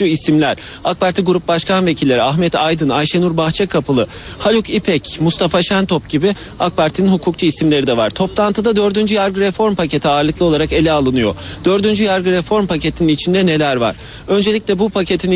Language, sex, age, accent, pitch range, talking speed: Turkish, male, 40-59, native, 155-200 Hz, 155 wpm